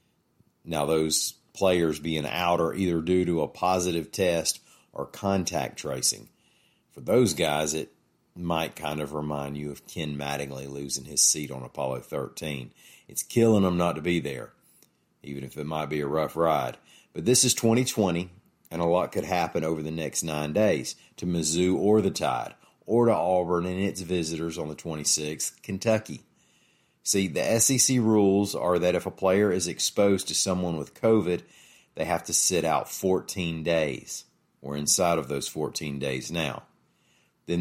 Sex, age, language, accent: male, 40-59, English, American